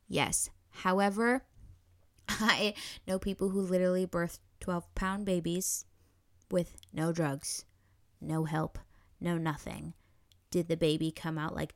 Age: 10-29